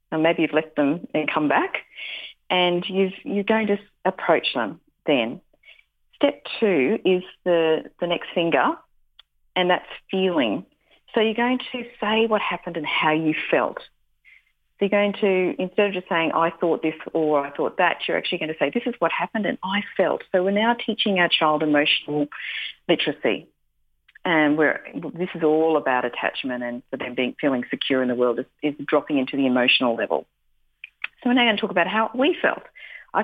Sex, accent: female, Australian